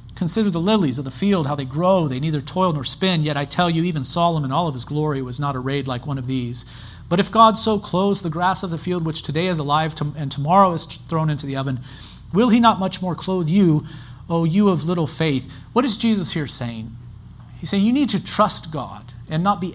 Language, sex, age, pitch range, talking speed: English, male, 40-59, 130-185 Hz, 245 wpm